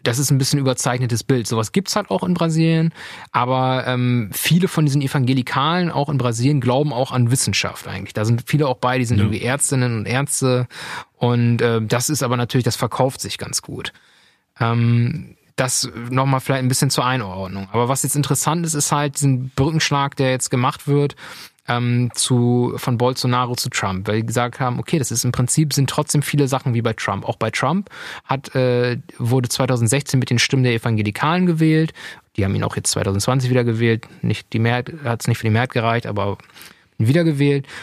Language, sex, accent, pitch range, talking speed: German, male, German, 120-145 Hz, 195 wpm